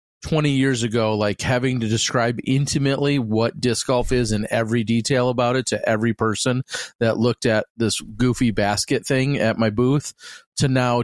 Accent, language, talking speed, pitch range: American, English, 175 wpm, 110-135 Hz